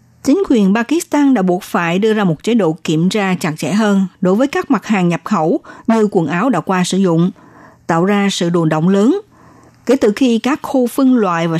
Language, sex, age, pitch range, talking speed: Vietnamese, female, 60-79, 175-245 Hz, 230 wpm